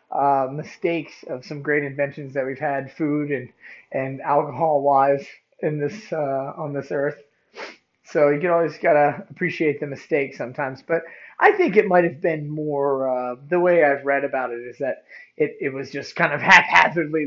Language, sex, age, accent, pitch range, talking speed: English, male, 30-49, American, 135-165 Hz, 185 wpm